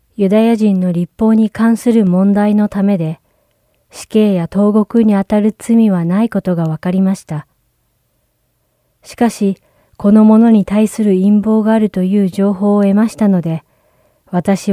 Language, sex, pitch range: Japanese, female, 175-215 Hz